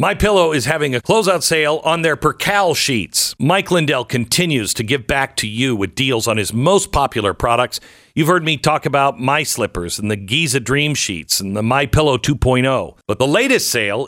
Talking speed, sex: 190 wpm, male